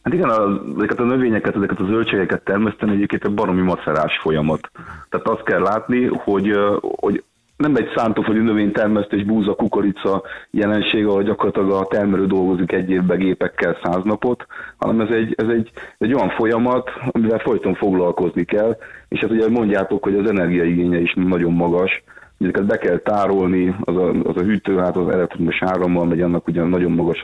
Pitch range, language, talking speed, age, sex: 85-105 Hz, Hungarian, 170 wpm, 30-49, male